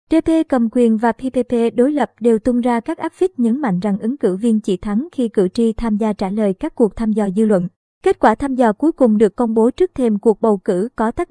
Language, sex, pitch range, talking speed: Vietnamese, male, 220-265 Hz, 265 wpm